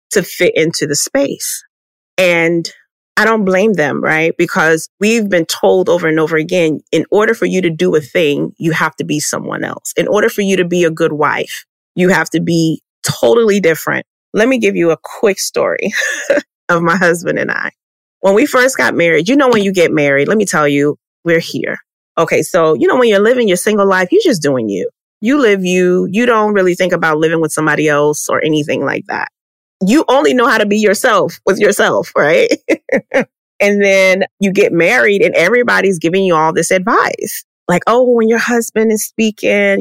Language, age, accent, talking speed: English, 30-49, American, 205 wpm